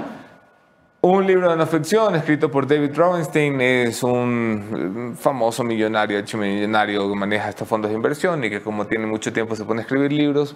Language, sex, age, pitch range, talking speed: English, male, 30-49, 105-140 Hz, 175 wpm